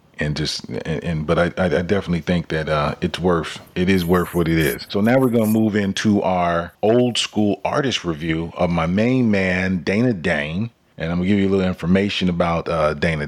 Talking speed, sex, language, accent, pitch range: 220 wpm, male, English, American, 85-100 Hz